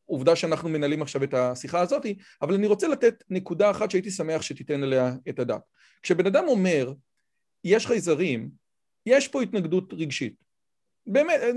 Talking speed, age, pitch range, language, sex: 150 wpm, 40-59, 150-210 Hz, Hebrew, male